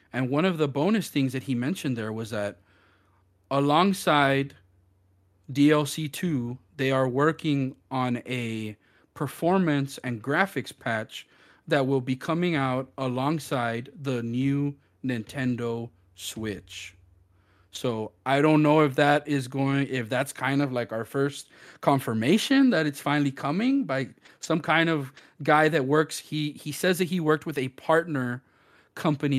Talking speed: 145 wpm